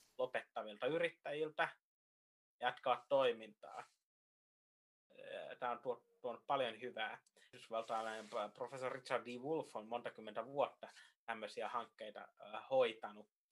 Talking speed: 90 wpm